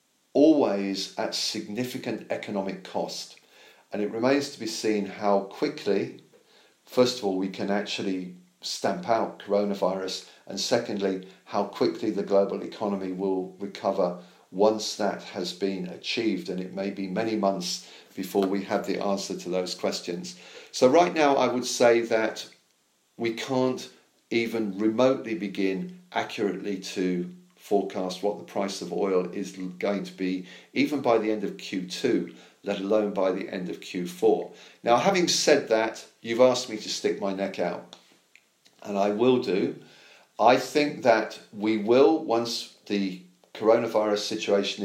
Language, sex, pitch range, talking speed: English, male, 95-115 Hz, 150 wpm